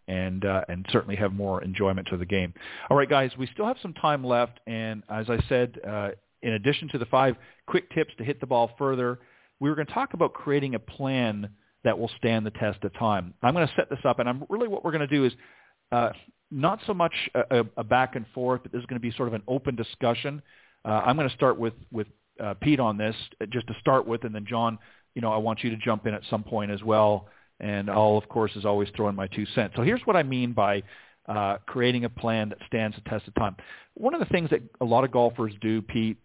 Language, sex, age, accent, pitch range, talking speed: English, male, 40-59, American, 110-135 Hz, 255 wpm